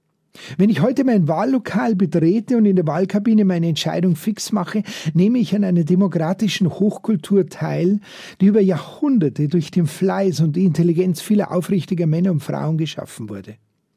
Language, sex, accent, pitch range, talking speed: German, male, Austrian, 155-195 Hz, 160 wpm